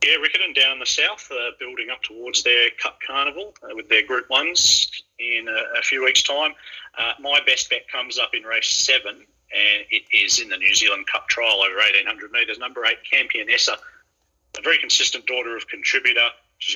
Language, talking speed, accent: English, 195 wpm, Australian